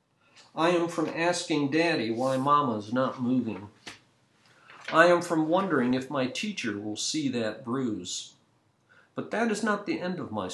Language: English